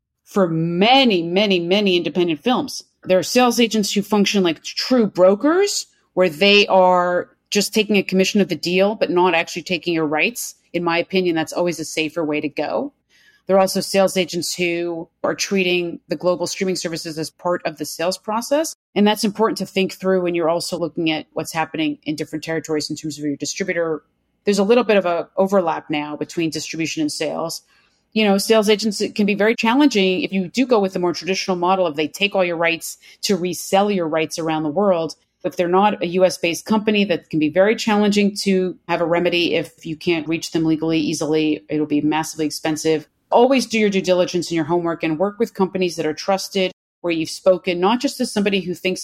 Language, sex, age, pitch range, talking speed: English, female, 40-59, 165-200 Hz, 210 wpm